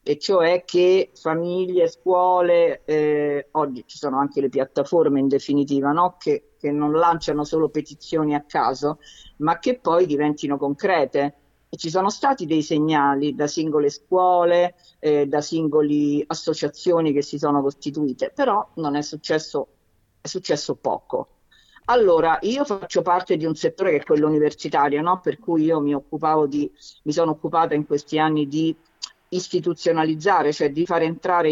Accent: native